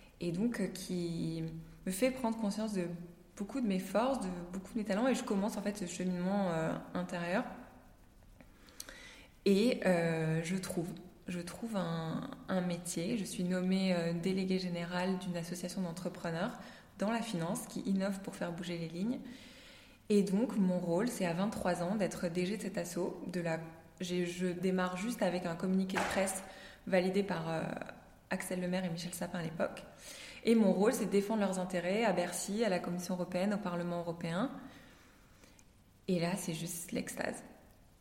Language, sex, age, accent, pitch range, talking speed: French, female, 20-39, French, 180-200 Hz, 170 wpm